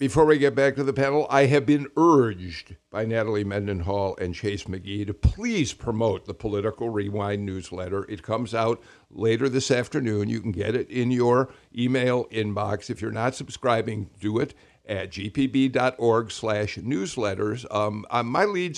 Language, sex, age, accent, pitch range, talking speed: English, male, 50-69, American, 105-135 Hz, 160 wpm